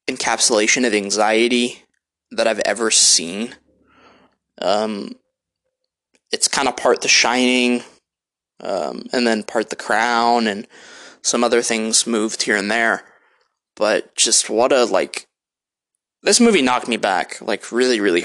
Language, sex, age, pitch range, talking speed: English, male, 20-39, 110-130 Hz, 135 wpm